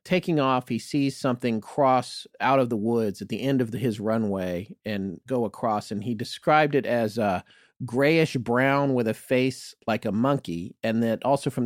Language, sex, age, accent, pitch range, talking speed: English, male, 40-59, American, 105-135 Hz, 190 wpm